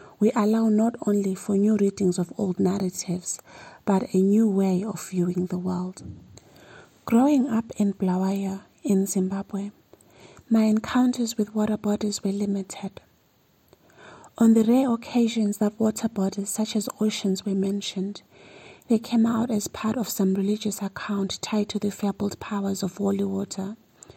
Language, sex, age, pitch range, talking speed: English, female, 30-49, 195-215 Hz, 150 wpm